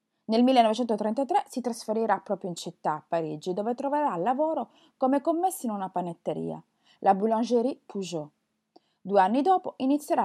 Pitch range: 190-285 Hz